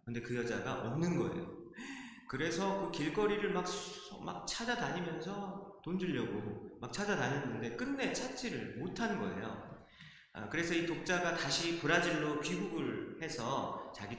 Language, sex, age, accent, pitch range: Korean, male, 30-49, native, 125-195 Hz